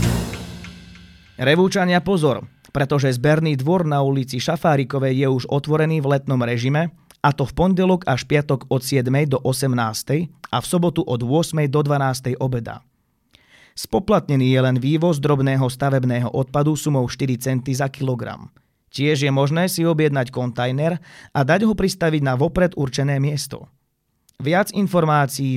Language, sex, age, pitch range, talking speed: Slovak, male, 30-49, 125-155 Hz, 140 wpm